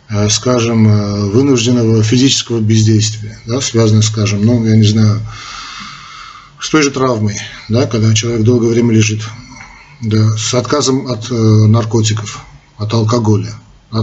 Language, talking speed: Russian, 120 wpm